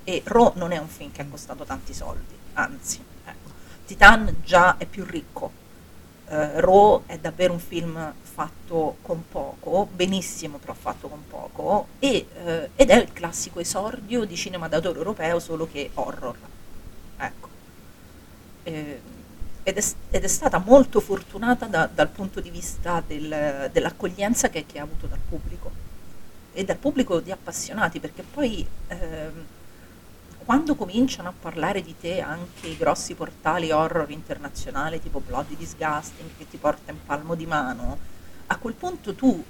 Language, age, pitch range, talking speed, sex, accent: Italian, 40-59, 155-235 Hz, 155 wpm, female, native